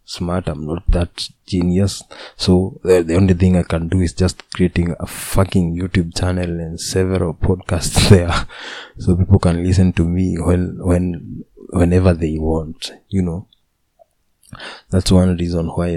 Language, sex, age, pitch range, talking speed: English, male, 20-39, 85-95 Hz, 160 wpm